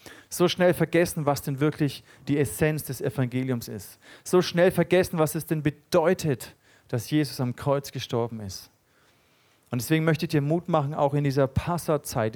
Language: German